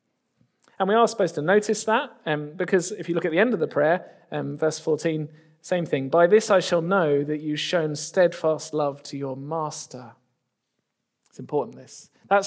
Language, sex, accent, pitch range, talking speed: English, male, British, 145-215 Hz, 190 wpm